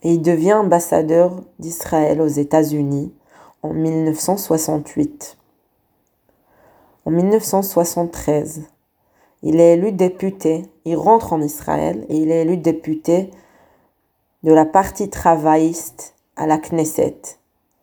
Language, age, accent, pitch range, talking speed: French, 20-39, French, 160-190 Hz, 105 wpm